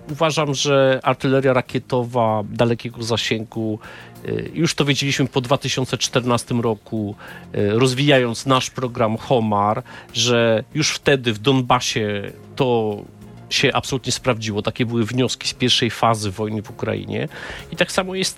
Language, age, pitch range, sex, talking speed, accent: Polish, 40-59, 115-145 Hz, male, 125 wpm, native